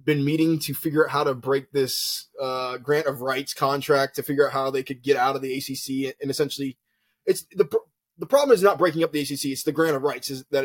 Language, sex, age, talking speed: English, male, 20-39, 250 wpm